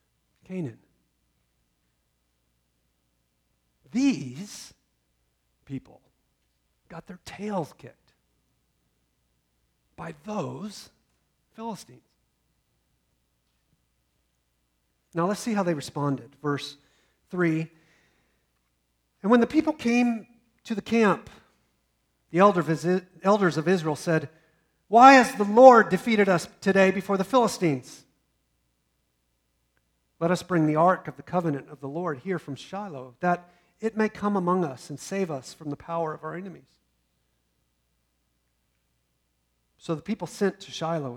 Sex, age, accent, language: male, 50-69, American, English